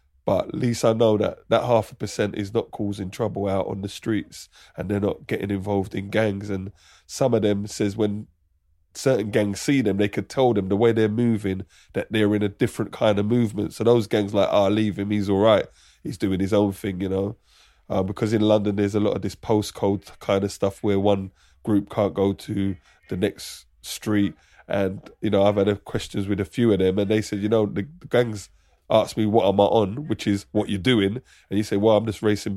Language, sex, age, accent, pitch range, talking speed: English, male, 20-39, British, 95-110 Hz, 235 wpm